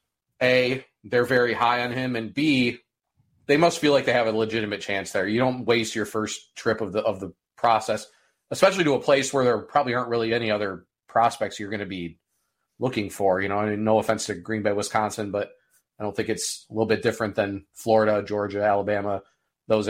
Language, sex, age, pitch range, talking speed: English, male, 30-49, 105-115 Hz, 215 wpm